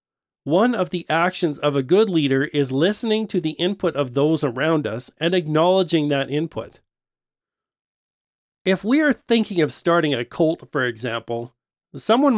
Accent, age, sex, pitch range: American, 40-59, male, 140-190 Hz